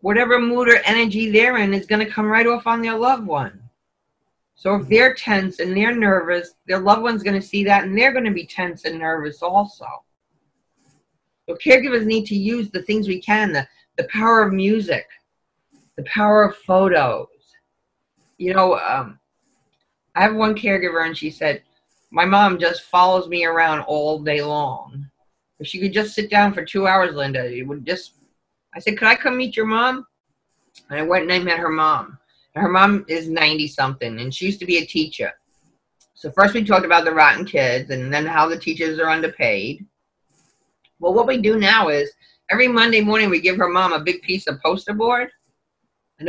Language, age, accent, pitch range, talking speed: English, 40-59, American, 165-215 Hz, 195 wpm